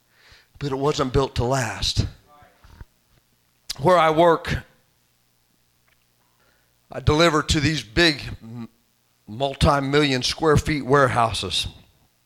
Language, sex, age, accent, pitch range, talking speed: English, male, 40-59, American, 130-165 Hz, 90 wpm